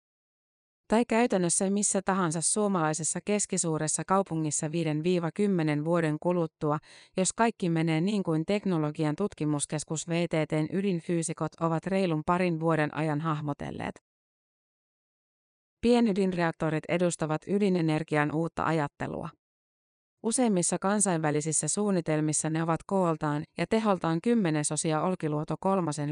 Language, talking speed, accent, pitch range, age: Finnish, 95 wpm, native, 155-190 Hz, 30-49